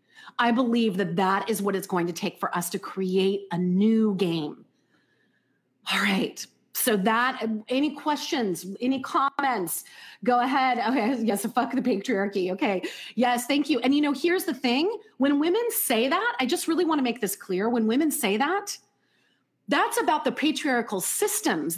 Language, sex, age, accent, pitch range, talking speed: English, female, 30-49, American, 225-320 Hz, 170 wpm